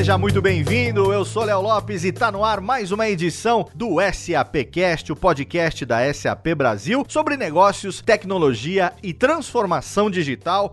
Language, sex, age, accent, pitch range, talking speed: Portuguese, male, 40-59, Brazilian, 160-235 Hz, 150 wpm